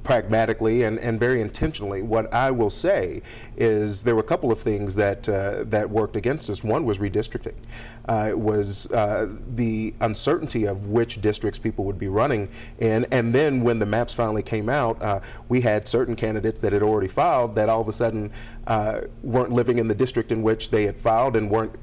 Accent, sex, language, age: American, male, English, 40-59